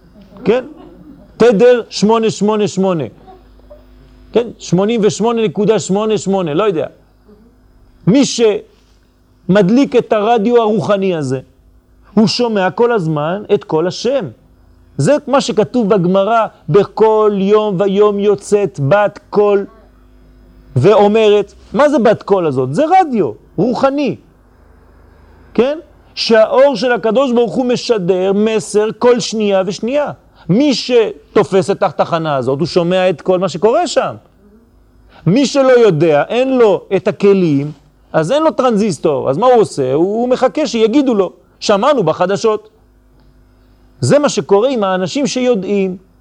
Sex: male